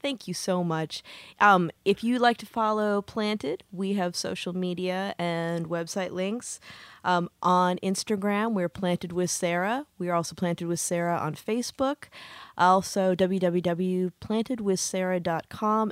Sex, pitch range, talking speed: female, 175-215 Hz, 130 wpm